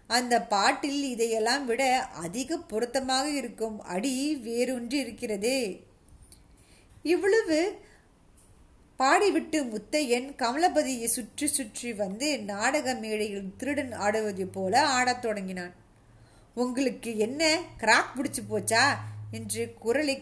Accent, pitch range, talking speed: native, 230-280 Hz, 90 wpm